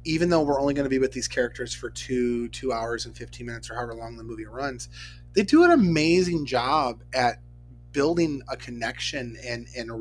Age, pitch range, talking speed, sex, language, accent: 30-49, 110-130 Hz, 210 wpm, male, English, American